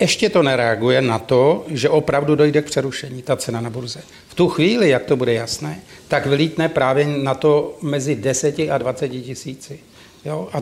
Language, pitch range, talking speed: Czech, 130-160 Hz, 180 wpm